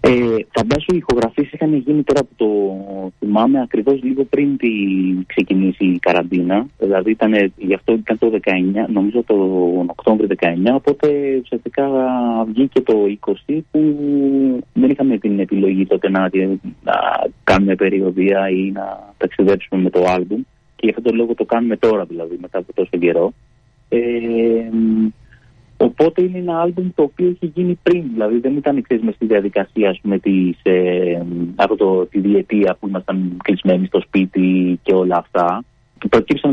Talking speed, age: 150 wpm, 30-49